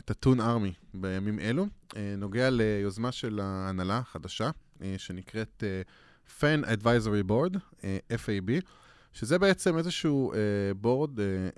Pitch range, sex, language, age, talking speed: 100-140 Hz, male, Hebrew, 20-39, 100 wpm